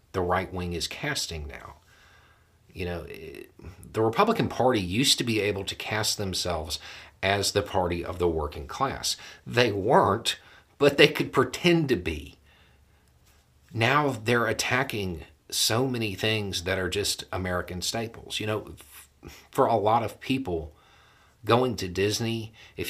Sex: male